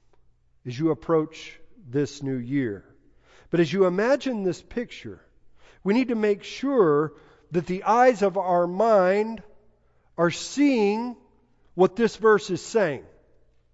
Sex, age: male, 50-69